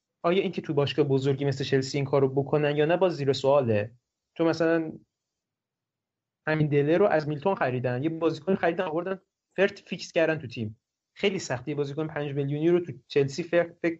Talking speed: 190 wpm